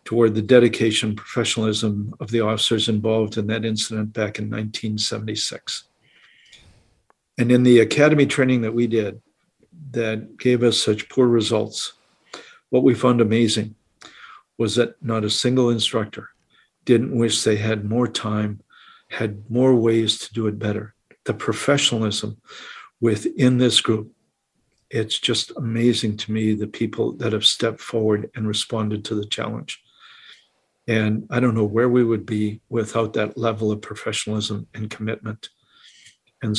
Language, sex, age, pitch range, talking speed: English, male, 50-69, 105-120 Hz, 145 wpm